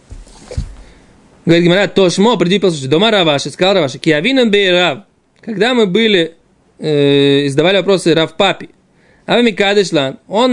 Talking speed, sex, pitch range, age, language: 65 wpm, male, 175-230 Hz, 20-39, Russian